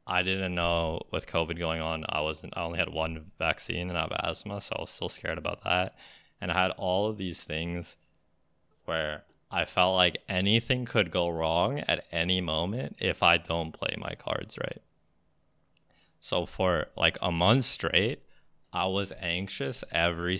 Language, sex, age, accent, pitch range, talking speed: English, male, 20-39, American, 80-95 Hz, 175 wpm